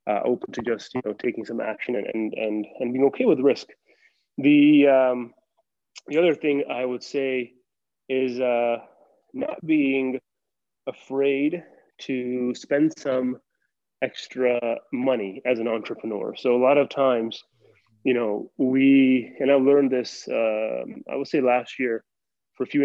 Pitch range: 120-145 Hz